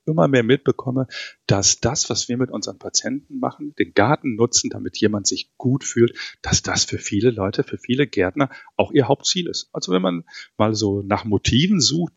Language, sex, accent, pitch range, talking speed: German, male, German, 110-155 Hz, 190 wpm